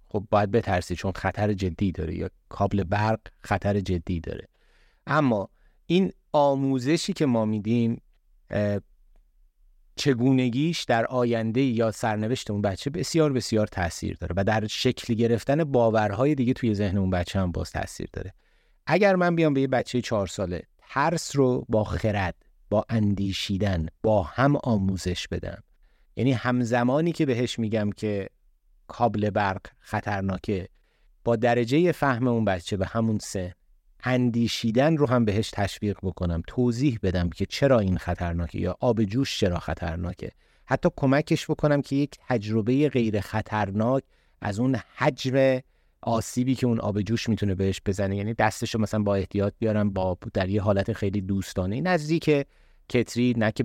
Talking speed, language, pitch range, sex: 150 wpm, Persian, 95-125 Hz, male